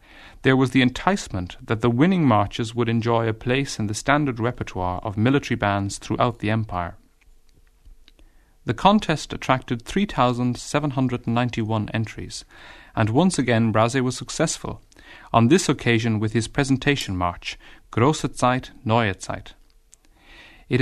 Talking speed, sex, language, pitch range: 130 wpm, male, English, 105-130 Hz